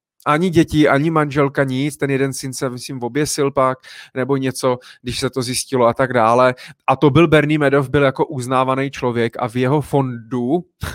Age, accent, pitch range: 20-39, native, 120-140 Hz